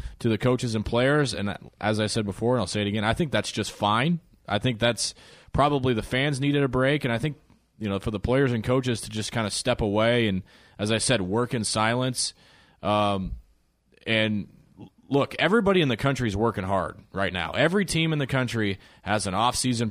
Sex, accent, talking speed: male, American, 215 wpm